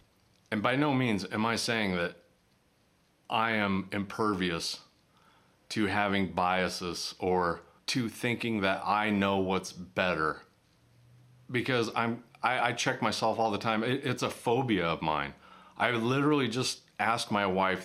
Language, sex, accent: English, male, American